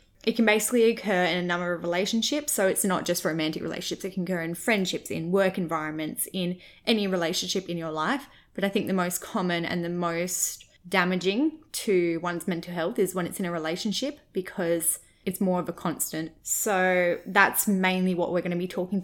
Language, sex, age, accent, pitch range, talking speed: English, female, 20-39, Australian, 180-210 Hz, 200 wpm